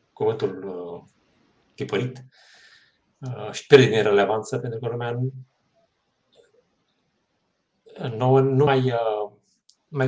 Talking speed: 90 wpm